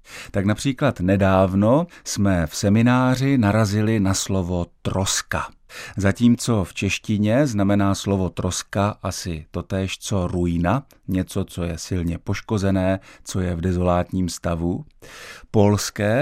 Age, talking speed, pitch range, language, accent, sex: 50-69, 115 wpm, 90-115 Hz, Czech, native, male